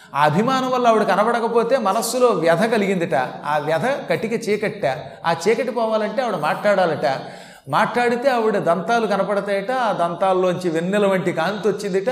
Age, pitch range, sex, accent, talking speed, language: 30-49, 165-220 Hz, male, native, 135 wpm, Telugu